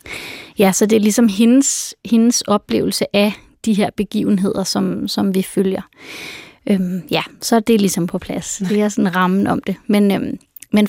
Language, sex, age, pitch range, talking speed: Danish, female, 20-39, 195-225 Hz, 185 wpm